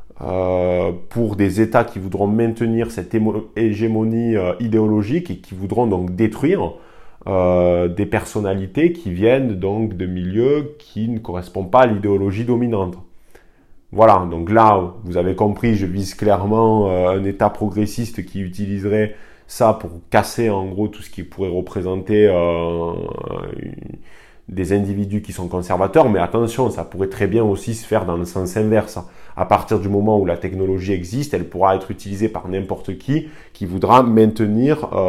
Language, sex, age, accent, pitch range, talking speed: French, male, 20-39, French, 95-110 Hz, 160 wpm